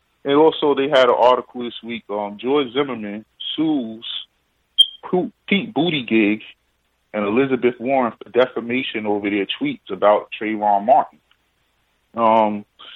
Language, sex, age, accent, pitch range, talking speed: English, male, 20-39, American, 105-125 Hz, 125 wpm